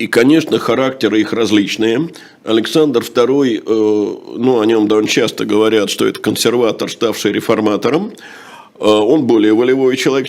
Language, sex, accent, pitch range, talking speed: Russian, male, native, 115-155 Hz, 130 wpm